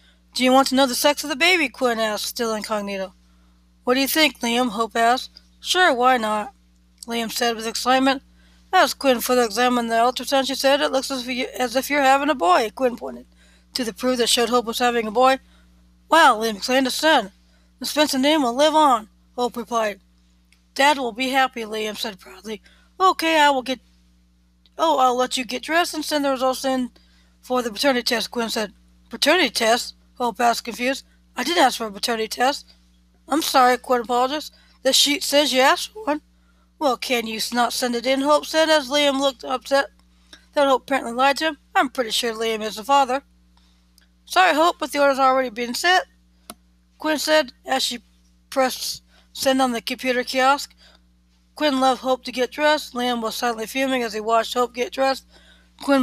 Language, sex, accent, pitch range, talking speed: English, female, American, 215-270 Hz, 195 wpm